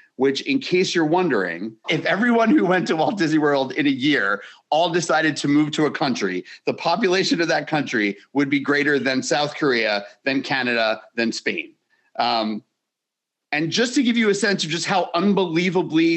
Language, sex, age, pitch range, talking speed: English, male, 40-59, 120-170 Hz, 185 wpm